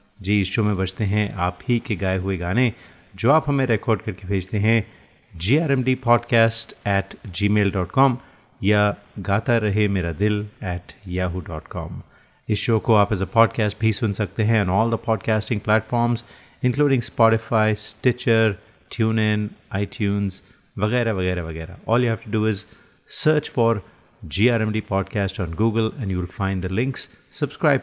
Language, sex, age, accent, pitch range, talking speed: Hindi, male, 30-49, native, 95-115 Hz, 165 wpm